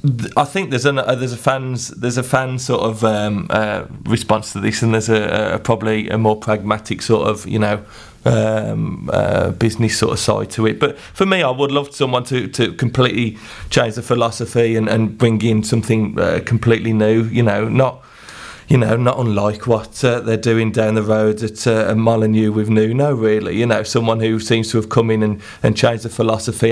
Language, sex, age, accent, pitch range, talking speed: English, male, 30-49, British, 110-120 Hz, 205 wpm